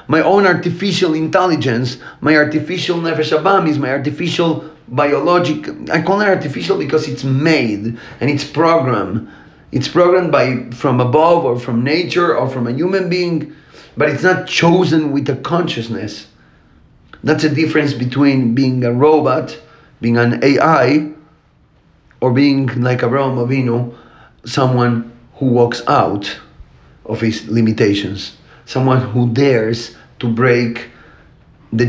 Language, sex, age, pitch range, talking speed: English, male, 40-59, 120-155 Hz, 130 wpm